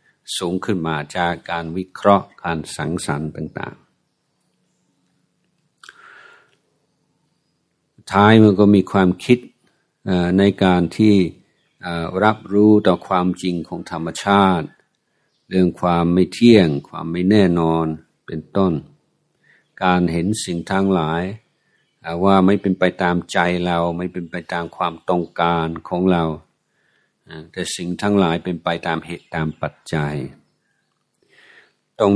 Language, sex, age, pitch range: Thai, male, 60-79, 85-100 Hz